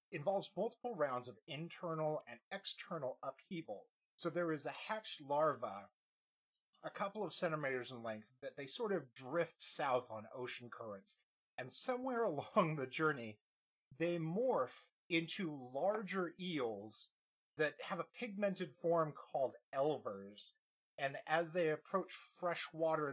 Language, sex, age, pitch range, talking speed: English, male, 30-49, 140-200 Hz, 135 wpm